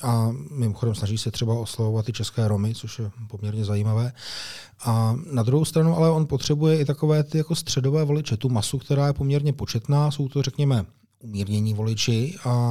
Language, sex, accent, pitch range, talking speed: Czech, male, native, 110-140 Hz, 180 wpm